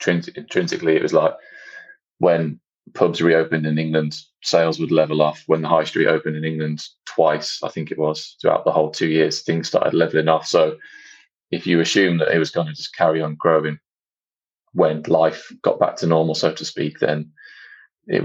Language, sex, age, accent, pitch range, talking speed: English, male, 20-39, British, 75-85 Hz, 190 wpm